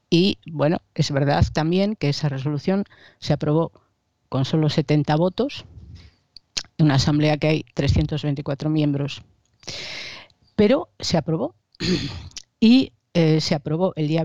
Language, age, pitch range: Spanish, 40-59, 140-165 Hz